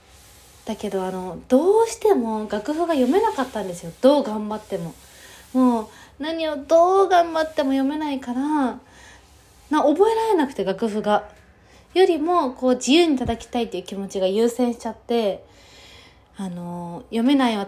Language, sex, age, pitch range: Japanese, female, 20-39, 180-255 Hz